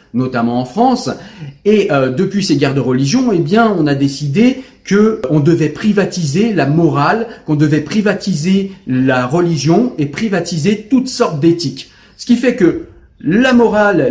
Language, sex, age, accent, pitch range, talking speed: French, male, 40-59, French, 140-195 Hz, 160 wpm